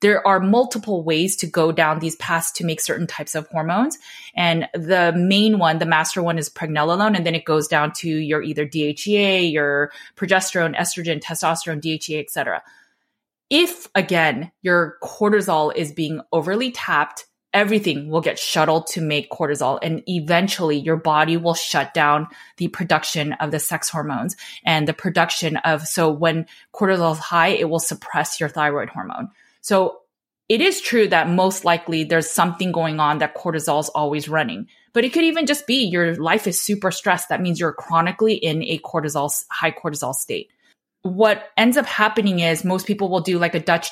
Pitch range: 160-190 Hz